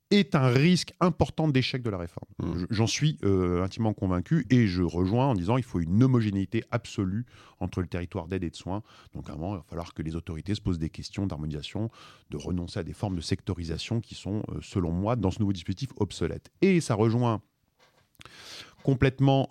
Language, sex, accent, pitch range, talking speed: French, male, French, 90-130 Hz, 195 wpm